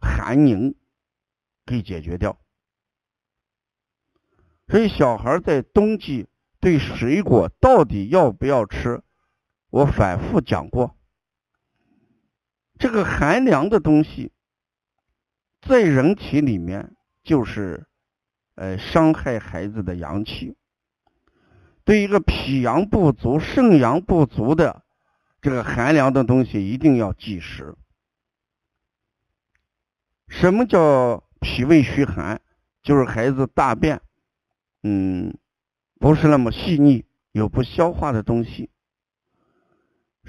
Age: 50-69